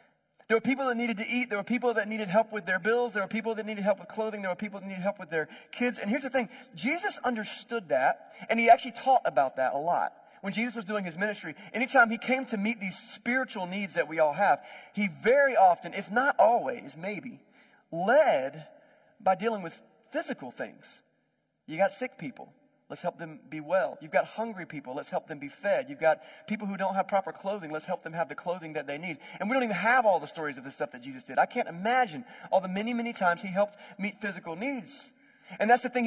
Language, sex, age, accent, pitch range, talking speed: English, male, 40-59, American, 195-245 Hz, 240 wpm